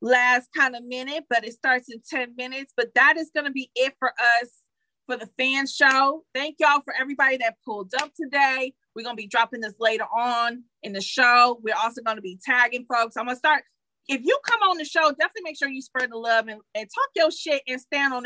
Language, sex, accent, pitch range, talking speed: English, female, American, 240-295 Hz, 240 wpm